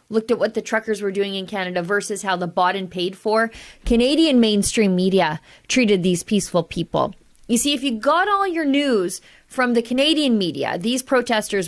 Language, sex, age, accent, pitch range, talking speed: English, female, 30-49, American, 195-250 Hz, 190 wpm